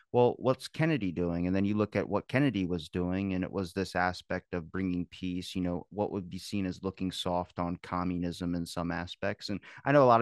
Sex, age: male, 30-49